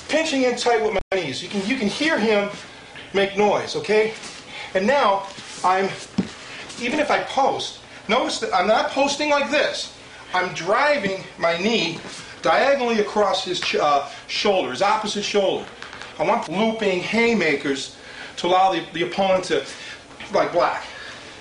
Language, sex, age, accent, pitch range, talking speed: English, male, 40-59, American, 205-275 Hz, 150 wpm